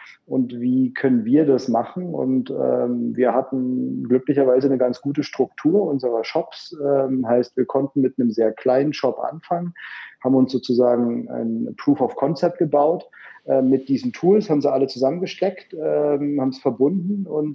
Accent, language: German, German